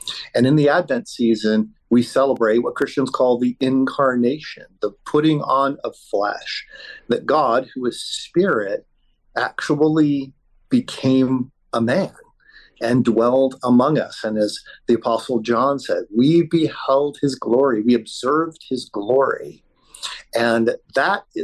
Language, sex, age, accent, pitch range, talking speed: English, male, 50-69, American, 120-160 Hz, 130 wpm